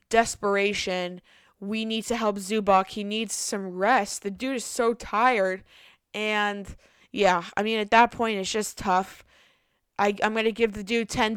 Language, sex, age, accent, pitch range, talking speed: English, female, 20-39, American, 195-235 Hz, 170 wpm